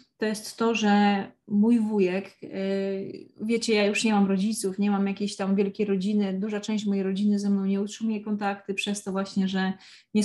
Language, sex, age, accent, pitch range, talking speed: Polish, female, 20-39, native, 200-220 Hz, 185 wpm